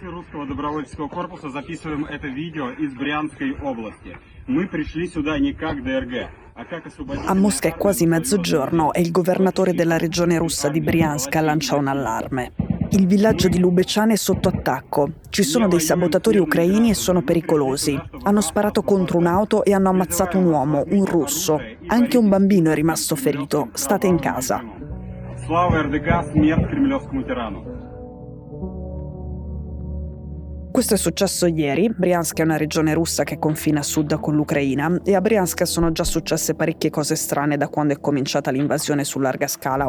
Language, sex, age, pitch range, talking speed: Italian, male, 30-49, 150-185 Hz, 125 wpm